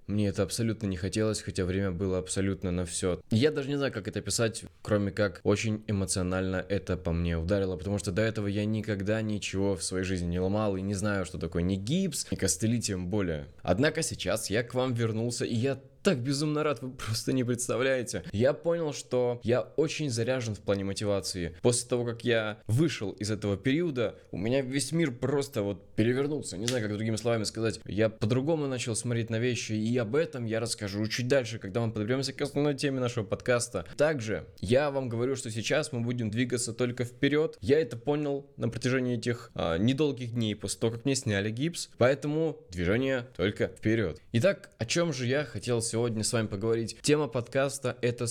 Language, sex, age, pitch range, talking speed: Russian, male, 20-39, 100-130 Hz, 195 wpm